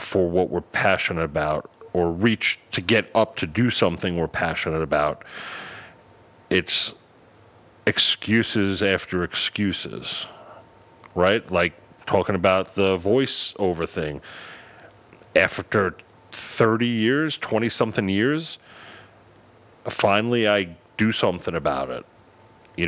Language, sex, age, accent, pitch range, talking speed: English, male, 40-59, American, 90-110 Hz, 105 wpm